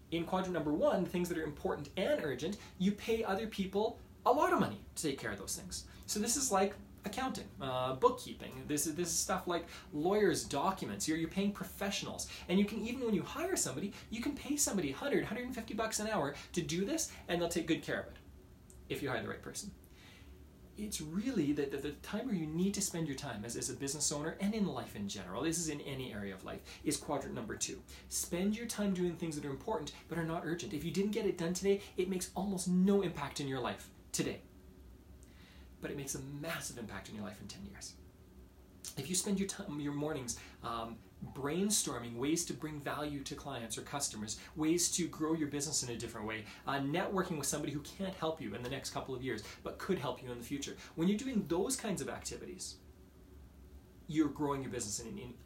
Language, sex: English, male